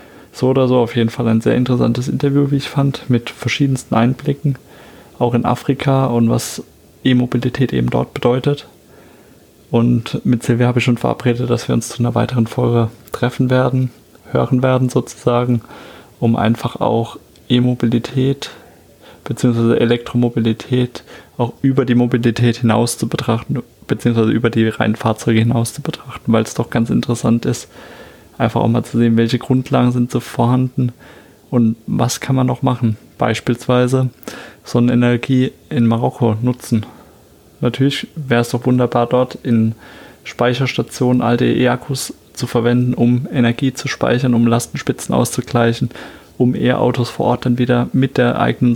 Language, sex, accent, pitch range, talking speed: German, male, German, 115-125 Hz, 150 wpm